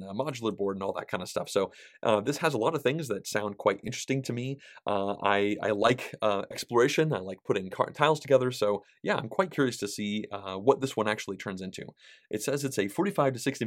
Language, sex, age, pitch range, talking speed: English, male, 30-49, 100-130 Hz, 245 wpm